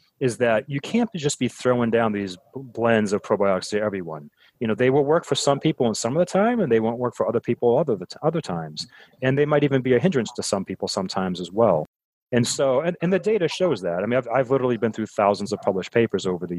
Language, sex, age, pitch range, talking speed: English, male, 30-49, 105-145 Hz, 270 wpm